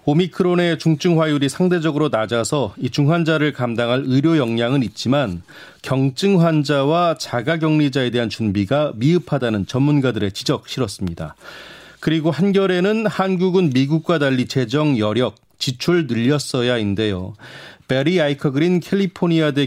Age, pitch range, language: 30-49, 120-160 Hz, Korean